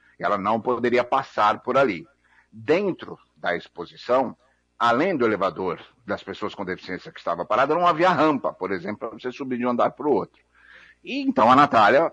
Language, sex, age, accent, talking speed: Portuguese, male, 60-79, Brazilian, 185 wpm